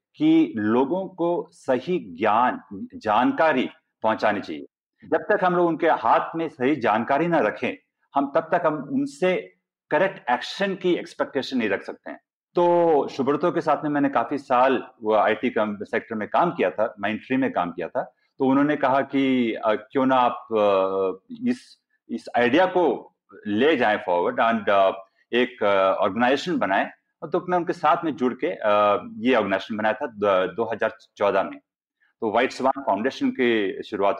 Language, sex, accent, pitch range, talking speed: Hindi, male, native, 120-190 Hz, 150 wpm